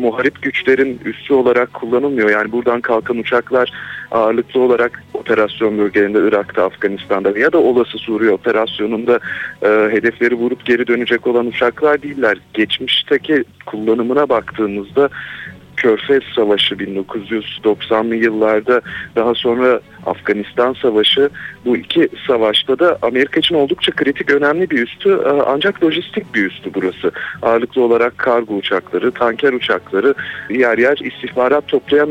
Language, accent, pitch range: Turkish, native, 115-140 Hz